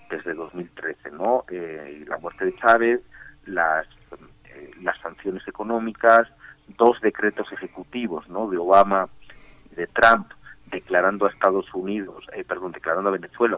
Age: 50-69